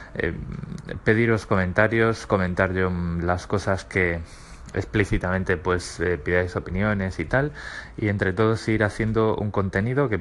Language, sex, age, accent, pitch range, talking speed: Spanish, male, 20-39, Spanish, 95-115 Hz, 140 wpm